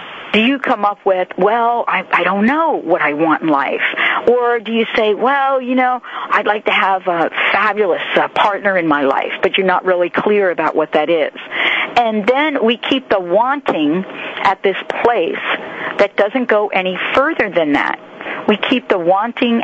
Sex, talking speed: female, 190 wpm